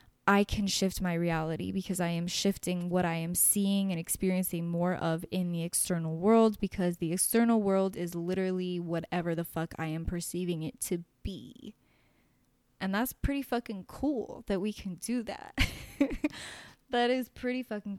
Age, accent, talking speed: 10-29, American, 165 wpm